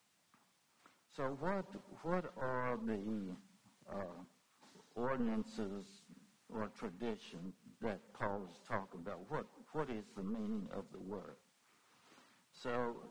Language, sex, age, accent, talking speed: English, male, 60-79, American, 105 wpm